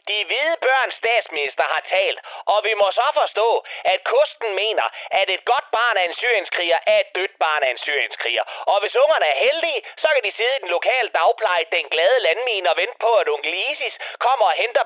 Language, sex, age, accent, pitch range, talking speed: Danish, male, 30-49, native, 195-295 Hz, 215 wpm